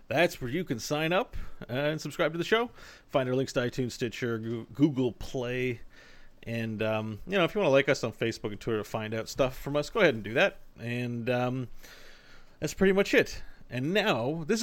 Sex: male